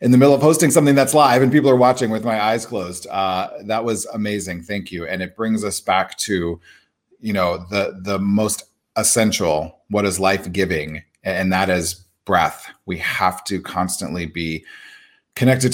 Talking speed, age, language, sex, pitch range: 185 wpm, 30-49, English, male, 105-145 Hz